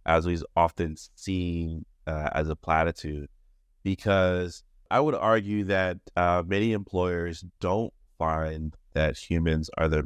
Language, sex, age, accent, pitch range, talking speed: English, male, 30-49, American, 80-95 Hz, 130 wpm